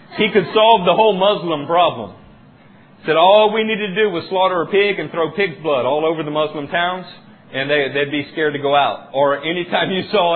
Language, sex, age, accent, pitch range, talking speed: English, male, 40-59, American, 125-185 Hz, 220 wpm